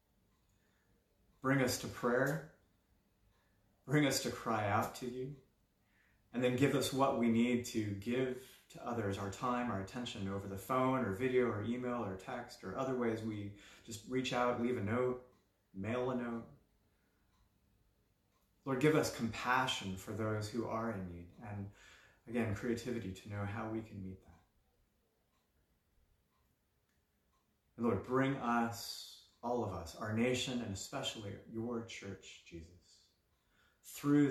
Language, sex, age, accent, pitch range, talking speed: English, male, 30-49, American, 100-120 Hz, 145 wpm